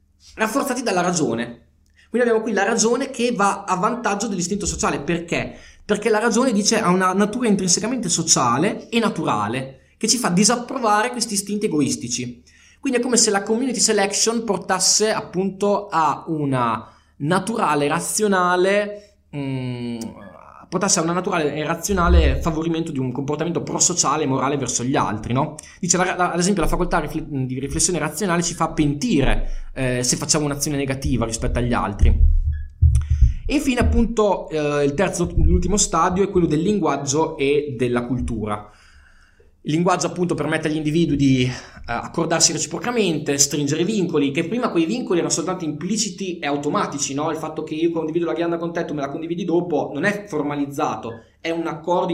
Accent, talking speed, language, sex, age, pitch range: native, 160 wpm, Italian, male, 20-39, 140-195 Hz